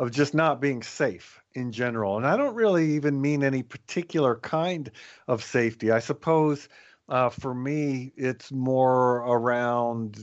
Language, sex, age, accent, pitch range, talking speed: English, male, 50-69, American, 115-140 Hz, 155 wpm